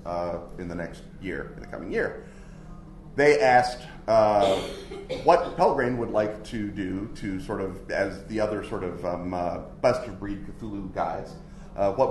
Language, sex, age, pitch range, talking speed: English, male, 30-49, 100-130 Hz, 165 wpm